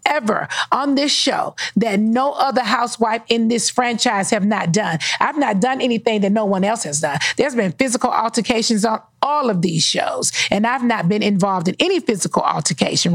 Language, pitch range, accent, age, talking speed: English, 215-285 Hz, American, 40-59, 190 wpm